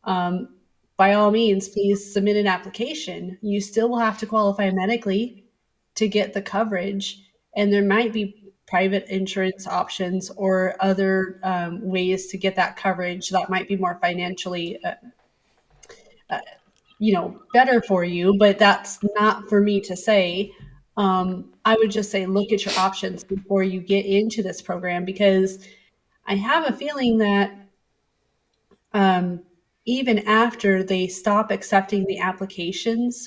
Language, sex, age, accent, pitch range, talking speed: English, female, 30-49, American, 185-210 Hz, 150 wpm